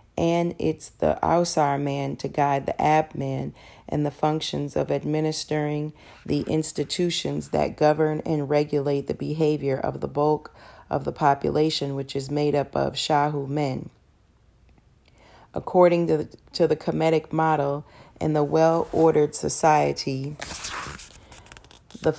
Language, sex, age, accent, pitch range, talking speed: English, female, 40-59, American, 140-160 Hz, 125 wpm